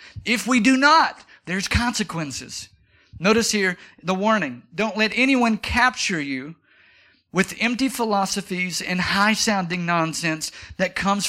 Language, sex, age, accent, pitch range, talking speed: English, male, 50-69, American, 185-230 Hz, 120 wpm